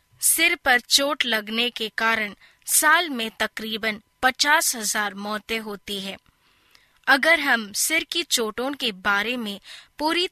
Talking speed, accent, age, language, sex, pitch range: 130 wpm, native, 20-39, Hindi, female, 220-280 Hz